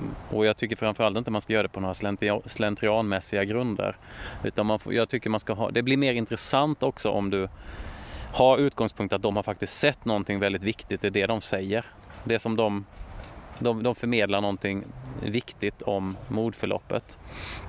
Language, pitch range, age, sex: Swedish, 95-115 Hz, 30-49, male